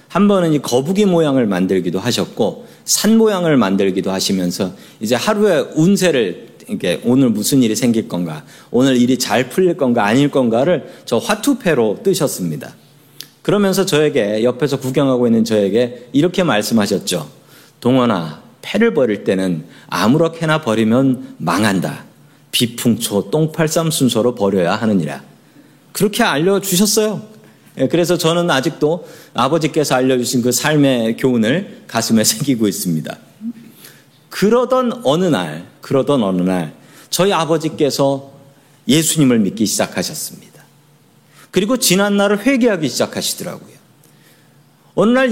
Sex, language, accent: male, Korean, native